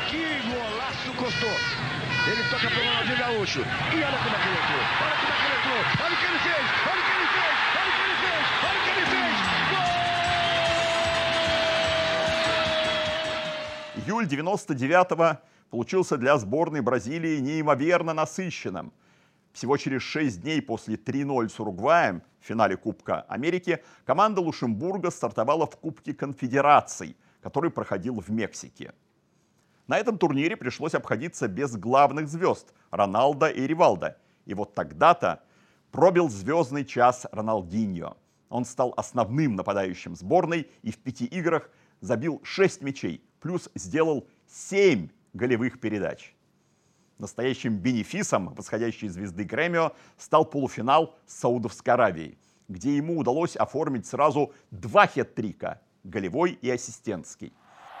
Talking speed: 90 wpm